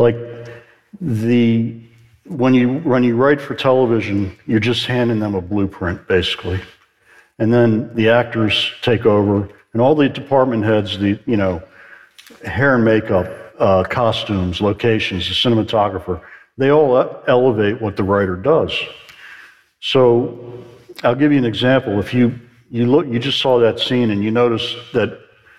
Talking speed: 150 wpm